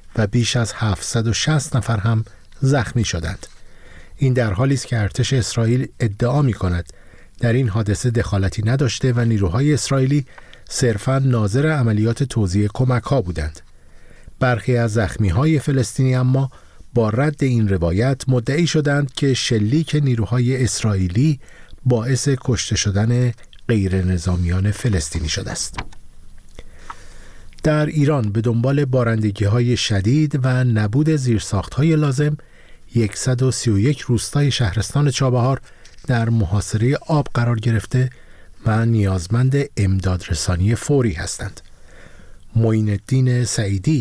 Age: 50-69